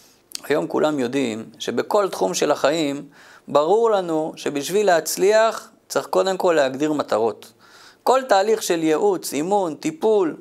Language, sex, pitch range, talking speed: Hebrew, male, 160-225 Hz, 125 wpm